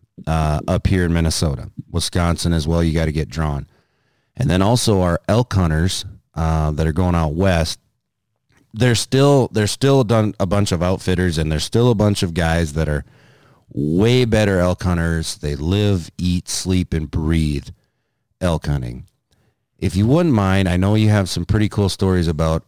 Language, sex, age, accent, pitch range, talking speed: English, male, 30-49, American, 85-105 Hz, 180 wpm